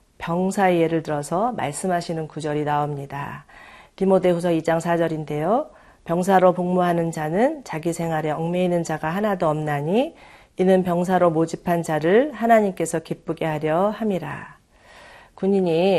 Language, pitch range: Korean, 155-190 Hz